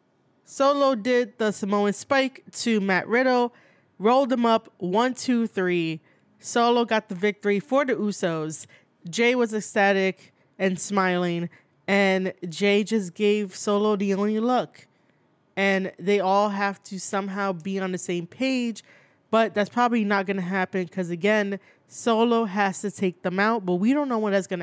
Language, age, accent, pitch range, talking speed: English, 20-39, American, 190-235 Hz, 165 wpm